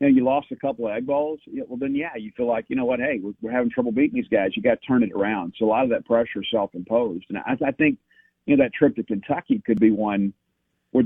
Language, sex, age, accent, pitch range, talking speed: English, male, 50-69, American, 115-150 Hz, 295 wpm